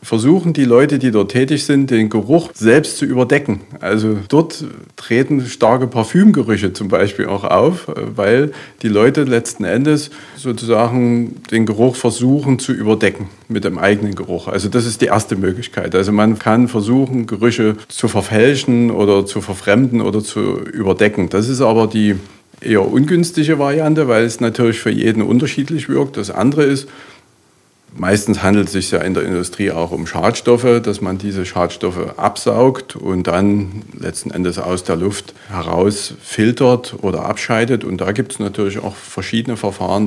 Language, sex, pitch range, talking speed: German, male, 100-125 Hz, 160 wpm